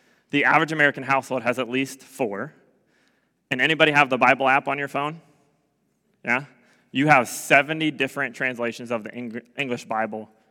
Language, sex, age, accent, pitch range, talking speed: English, male, 20-39, American, 120-150 Hz, 155 wpm